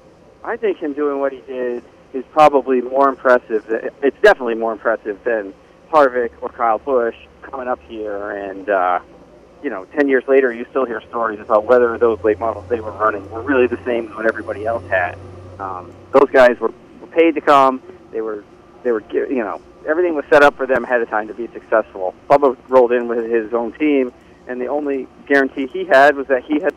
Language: English